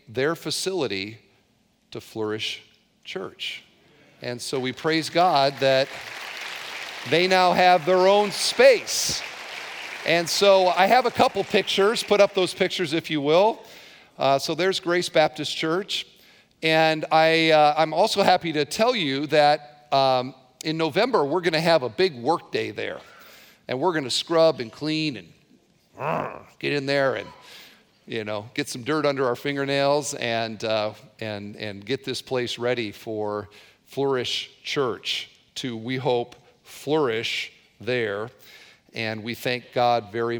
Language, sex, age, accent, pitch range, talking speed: English, male, 50-69, American, 115-165 Hz, 150 wpm